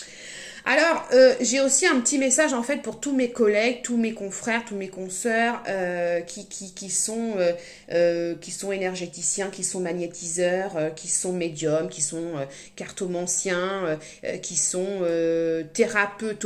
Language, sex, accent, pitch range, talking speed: French, female, French, 195-280 Hz, 140 wpm